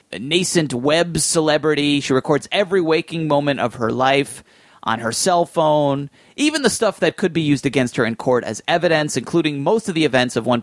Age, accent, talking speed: 30-49, American, 200 wpm